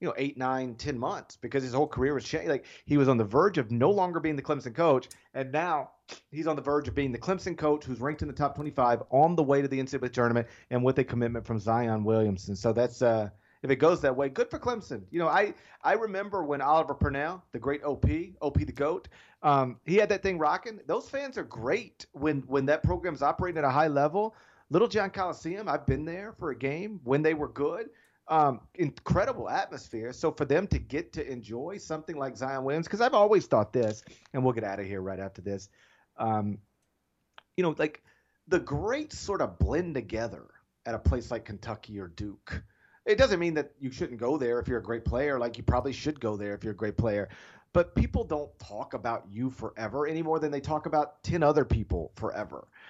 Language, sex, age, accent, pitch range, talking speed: English, male, 40-59, American, 115-155 Hz, 225 wpm